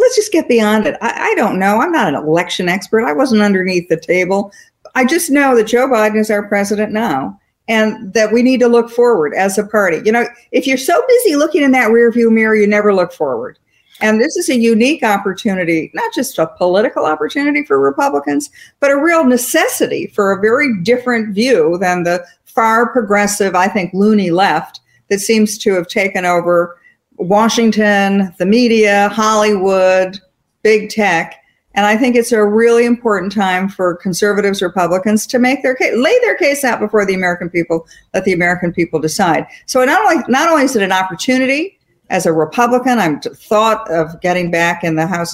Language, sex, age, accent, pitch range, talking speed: English, female, 50-69, American, 180-245 Hz, 190 wpm